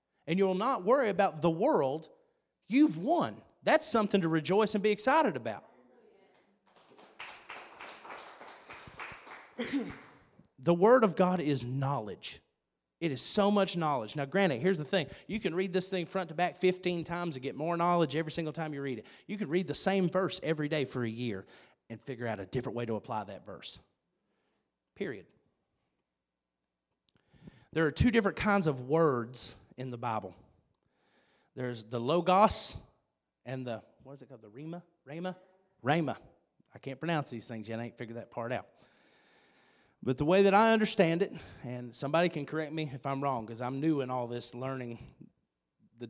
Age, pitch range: 30-49, 120-180 Hz